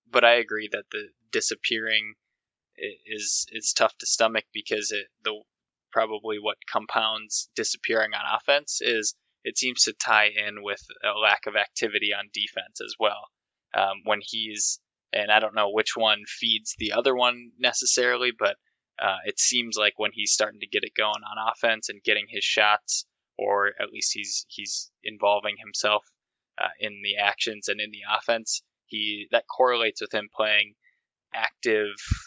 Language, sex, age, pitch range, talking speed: English, male, 20-39, 105-115 Hz, 165 wpm